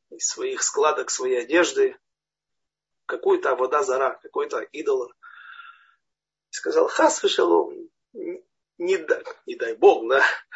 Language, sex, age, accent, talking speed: Russian, male, 40-59, native, 115 wpm